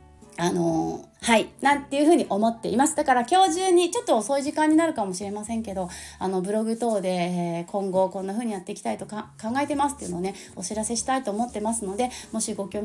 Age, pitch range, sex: 30-49, 195-260 Hz, female